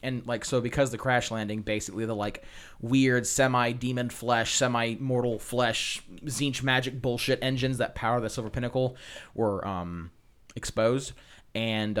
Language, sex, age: English, male, 20-39